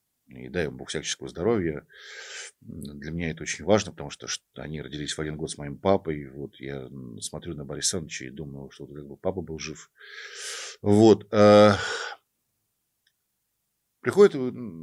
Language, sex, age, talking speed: Russian, male, 50-69, 140 wpm